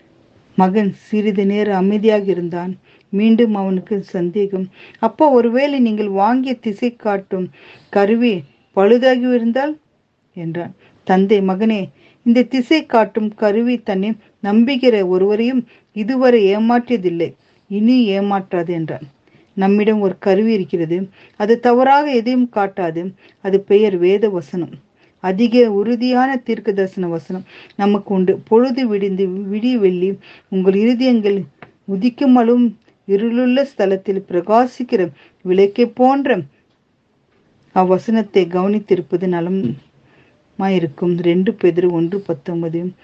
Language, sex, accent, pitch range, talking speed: Tamil, female, native, 185-225 Hz, 90 wpm